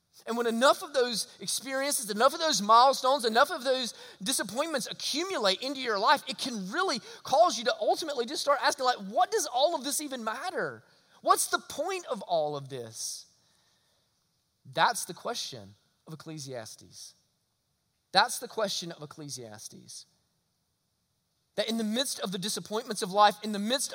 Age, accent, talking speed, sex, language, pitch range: 20-39, American, 165 wpm, male, English, 200-290 Hz